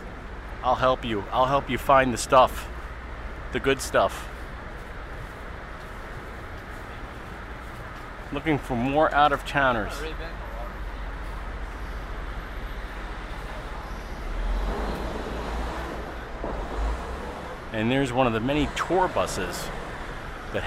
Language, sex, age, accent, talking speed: English, male, 40-59, American, 80 wpm